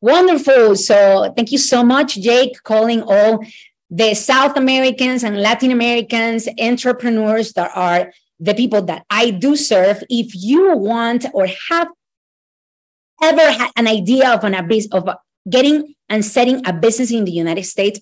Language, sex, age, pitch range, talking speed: English, female, 30-49, 200-250 Hz, 150 wpm